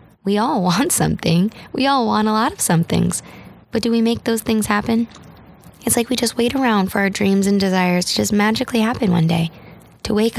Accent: American